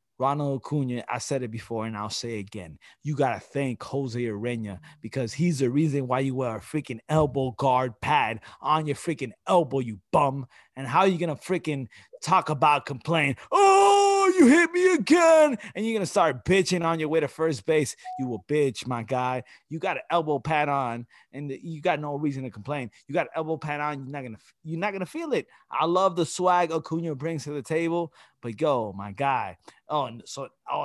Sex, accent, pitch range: male, American, 125-170 Hz